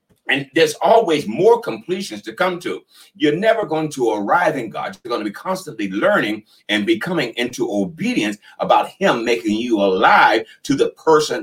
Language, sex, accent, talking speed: English, male, American, 175 wpm